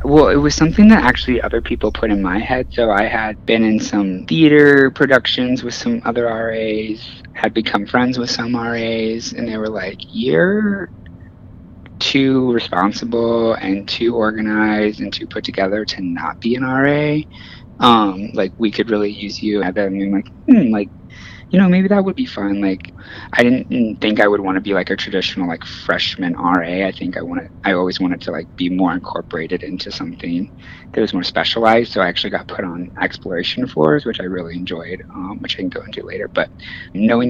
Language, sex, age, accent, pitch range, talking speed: English, male, 20-39, American, 95-125 Hz, 200 wpm